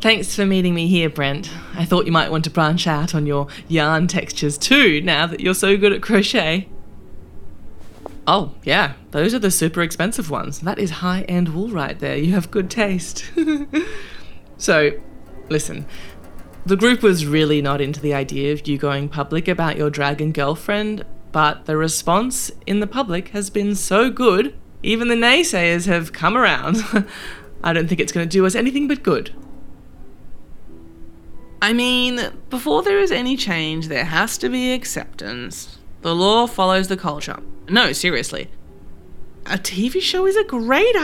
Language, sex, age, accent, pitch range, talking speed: English, female, 20-39, Australian, 150-210 Hz, 165 wpm